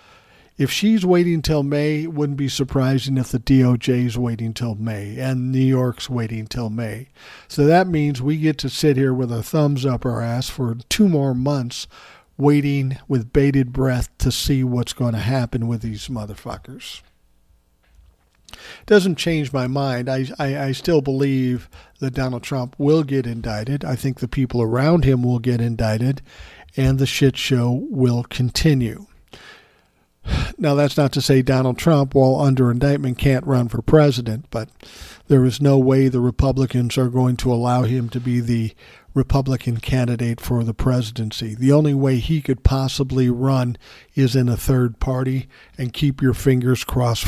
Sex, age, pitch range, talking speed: male, 50-69, 120-140 Hz, 170 wpm